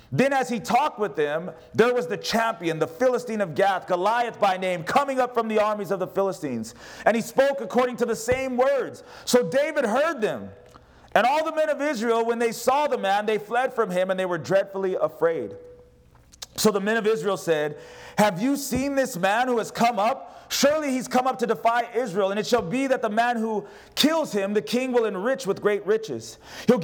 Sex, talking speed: male, 215 wpm